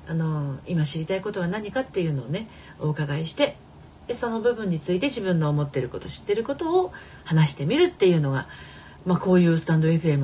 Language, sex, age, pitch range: Japanese, female, 40-59, 150-210 Hz